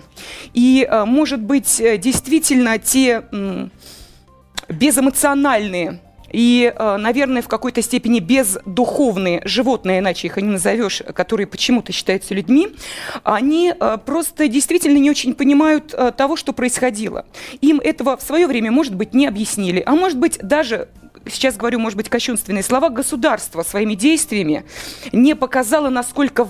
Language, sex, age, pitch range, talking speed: Russian, female, 30-49, 200-265 Hz, 125 wpm